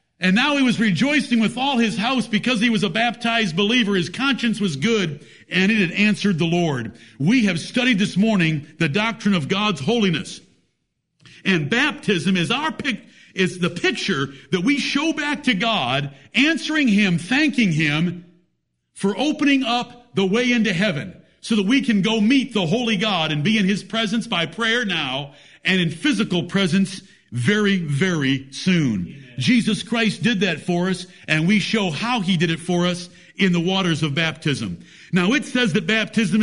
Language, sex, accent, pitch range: English, male, American, 170-225 Hz